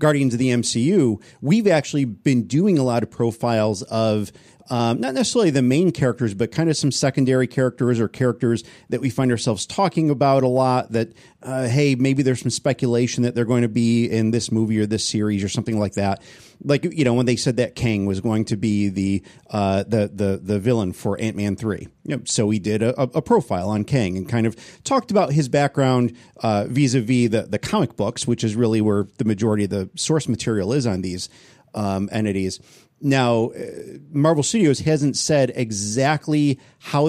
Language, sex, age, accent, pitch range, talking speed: English, male, 40-59, American, 110-135 Hz, 200 wpm